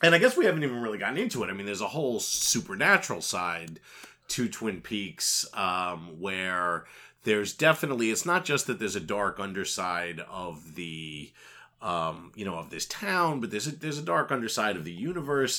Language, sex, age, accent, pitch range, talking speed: English, male, 30-49, American, 90-130 Hz, 190 wpm